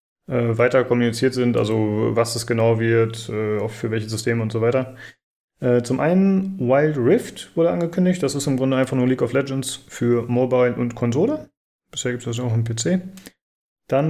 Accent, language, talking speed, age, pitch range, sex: German, German, 185 wpm, 30-49, 120-165 Hz, male